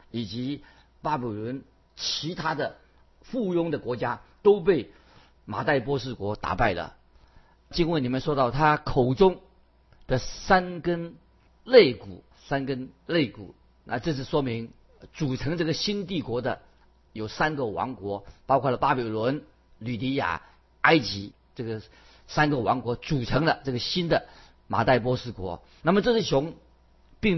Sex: male